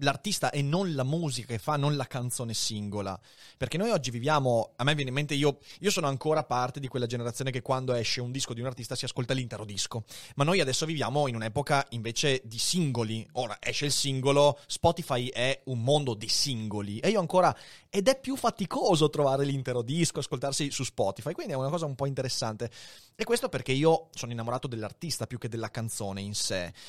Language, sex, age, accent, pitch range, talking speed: Italian, male, 30-49, native, 120-150 Hz, 205 wpm